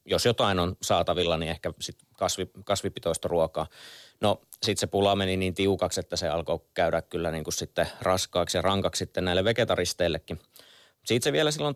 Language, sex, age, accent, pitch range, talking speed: Finnish, male, 30-49, native, 90-105 Hz, 170 wpm